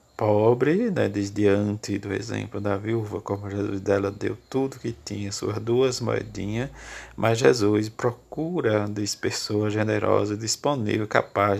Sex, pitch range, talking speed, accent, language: male, 100-115 Hz, 135 wpm, Brazilian, Portuguese